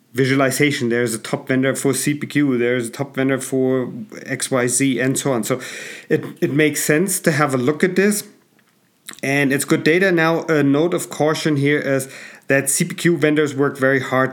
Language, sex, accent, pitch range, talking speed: English, male, German, 120-145 Hz, 185 wpm